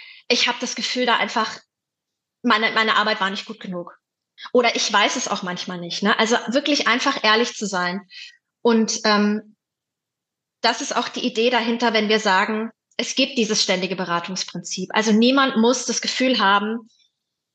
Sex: female